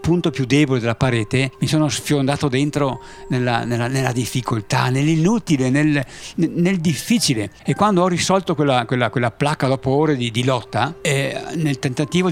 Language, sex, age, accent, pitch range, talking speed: Italian, male, 50-69, native, 120-155 Hz, 165 wpm